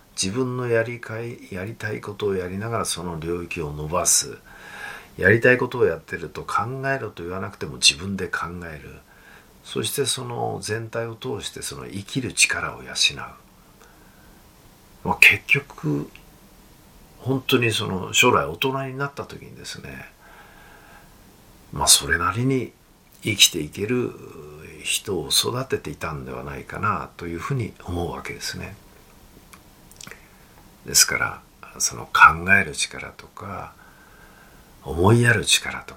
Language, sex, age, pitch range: Japanese, male, 50-69, 85-130 Hz